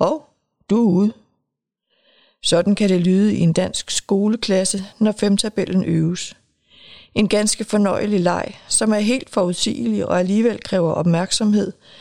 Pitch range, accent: 170-205 Hz, native